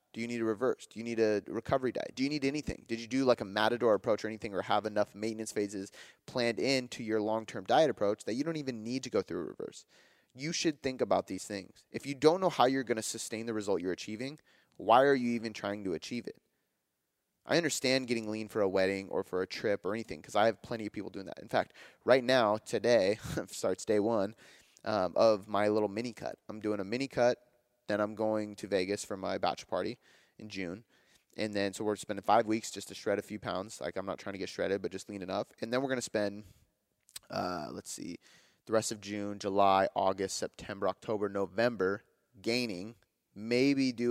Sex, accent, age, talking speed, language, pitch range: male, American, 20-39, 225 wpm, English, 105-120 Hz